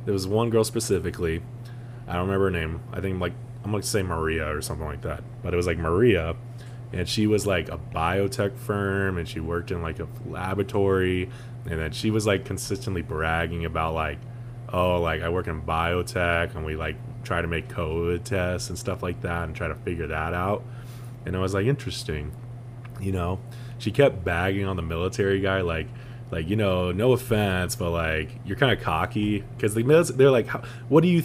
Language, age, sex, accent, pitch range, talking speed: English, 20-39, male, American, 85-120 Hz, 205 wpm